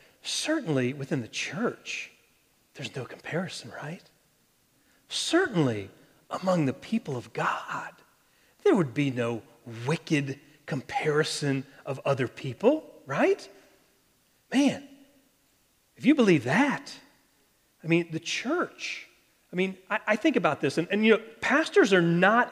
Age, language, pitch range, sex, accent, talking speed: 40-59, English, 155-225 Hz, male, American, 125 wpm